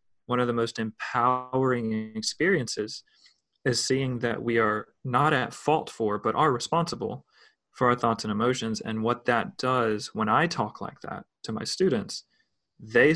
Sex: male